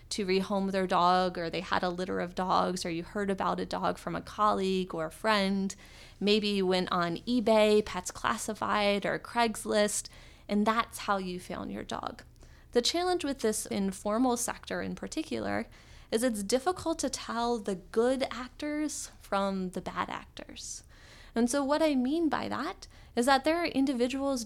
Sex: female